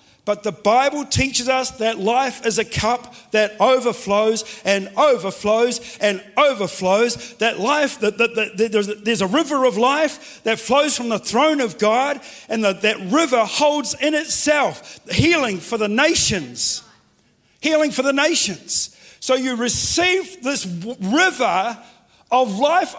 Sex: male